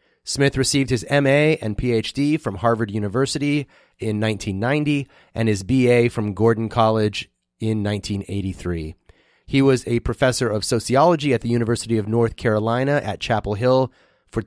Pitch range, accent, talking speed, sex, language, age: 110-130 Hz, American, 145 wpm, male, English, 30-49